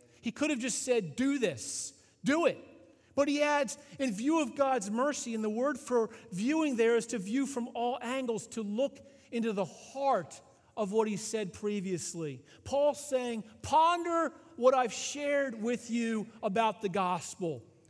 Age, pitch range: 40-59, 205-260 Hz